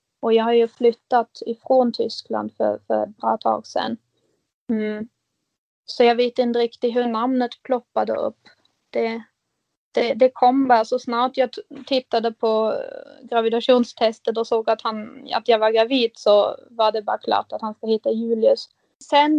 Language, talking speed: Swedish, 165 wpm